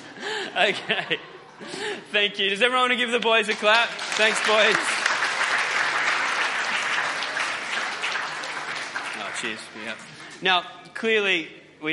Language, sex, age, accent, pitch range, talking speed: English, male, 20-39, Australian, 145-190 Hz, 100 wpm